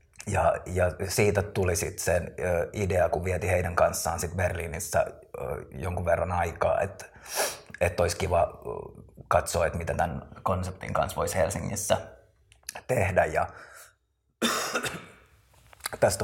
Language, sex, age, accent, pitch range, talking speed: Finnish, male, 30-49, native, 85-95 Hz, 115 wpm